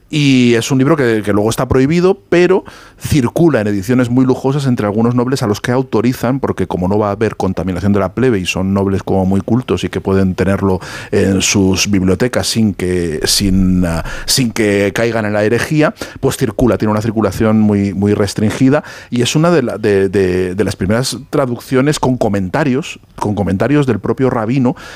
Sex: male